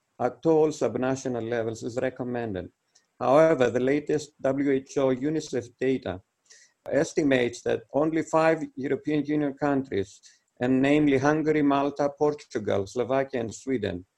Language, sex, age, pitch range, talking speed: English, male, 50-69, 125-150 Hz, 115 wpm